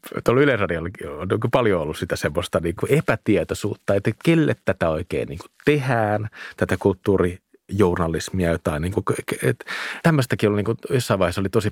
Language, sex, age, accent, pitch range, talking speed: Finnish, male, 30-49, native, 90-115 Hz, 155 wpm